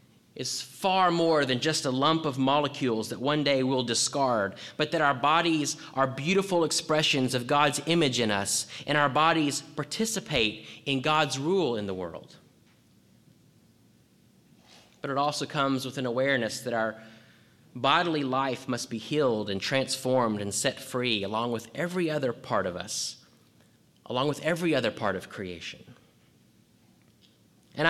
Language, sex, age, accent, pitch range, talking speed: English, male, 30-49, American, 120-150 Hz, 150 wpm